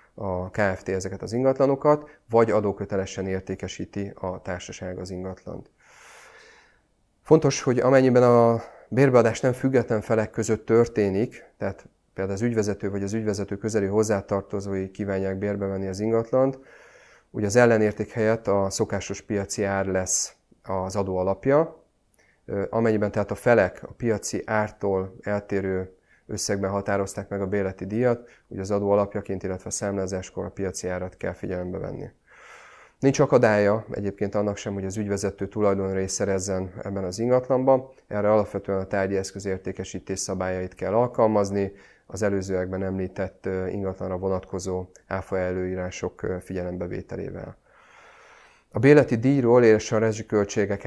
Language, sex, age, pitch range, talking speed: Hungarian, male, 30-49, 95-110 Hz, 125 wpm